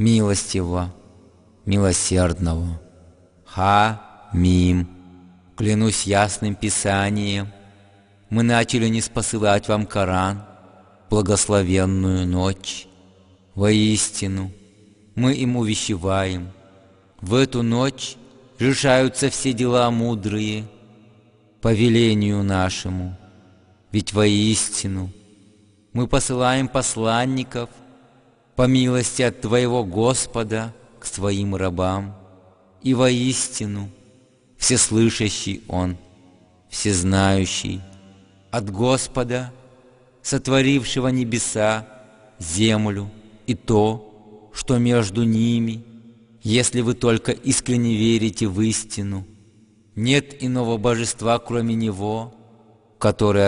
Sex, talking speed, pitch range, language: male, 75 wpm, 95-120 Hz, English